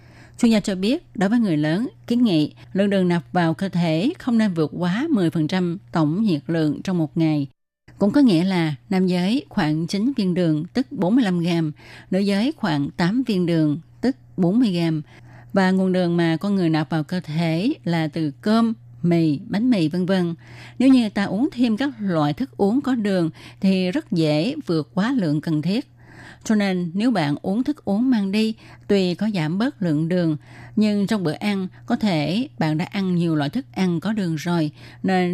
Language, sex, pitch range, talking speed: Vietnamese, female, 155-205 Hz, 200 wpm